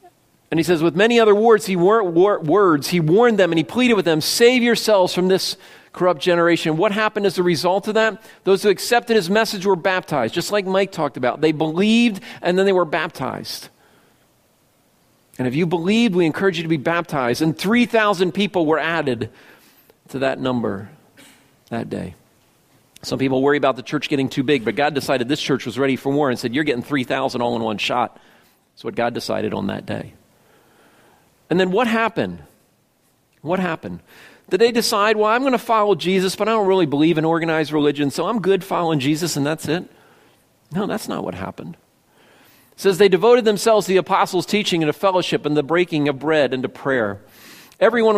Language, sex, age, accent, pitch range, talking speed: English, male, 40-59, American, 145-200 Hz, 200 wpm